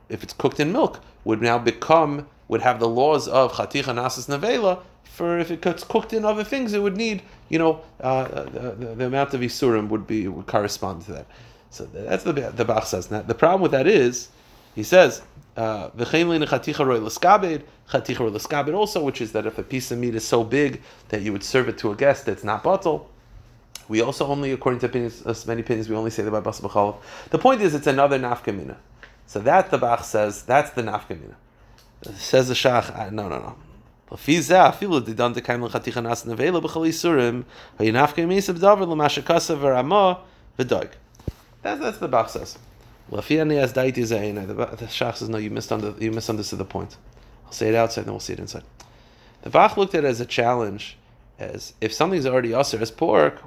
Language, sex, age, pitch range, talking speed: English, male, 30-49, 115-150 Hz, 180 wpm